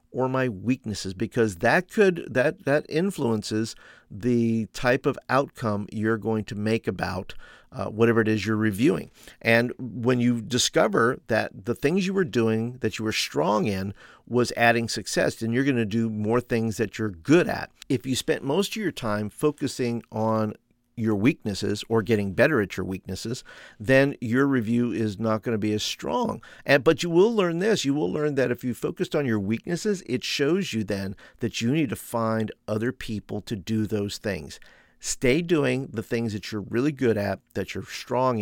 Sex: male